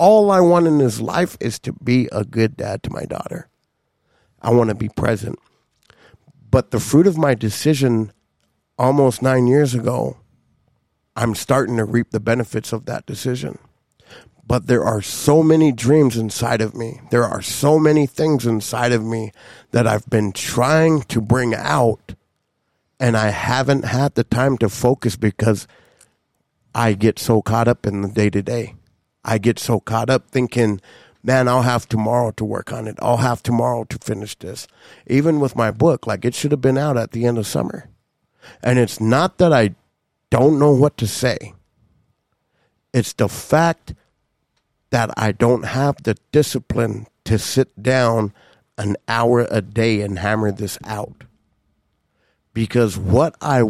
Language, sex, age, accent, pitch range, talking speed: English, male, 50-69, American, 110-130 Hz, 165 wpm